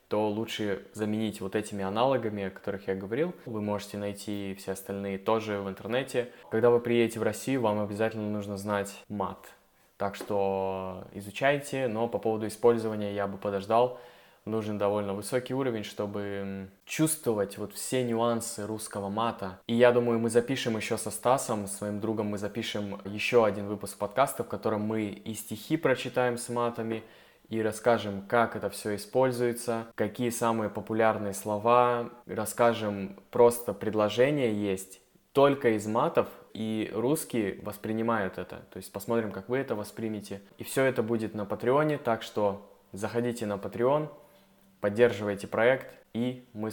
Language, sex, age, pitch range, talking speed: Russian, male, 20-39, 100-120 Hz, 150 wpm